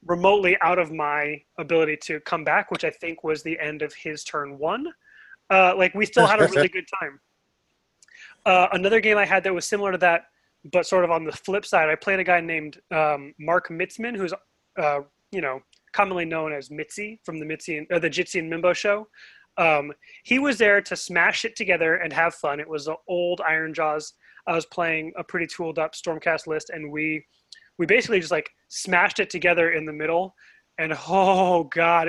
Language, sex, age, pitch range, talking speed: English, male, 30-49, 165-200 Hz, 200 wpm